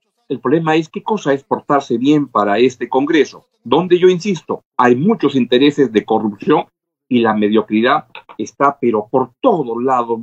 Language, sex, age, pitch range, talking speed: Spanish, male, 50-69, 130-185 Hz, 160 wpm